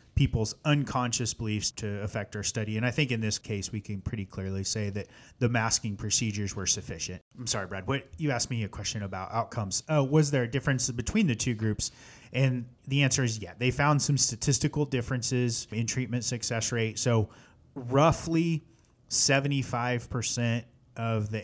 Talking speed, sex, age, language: 175 wpm, male, 30-49, English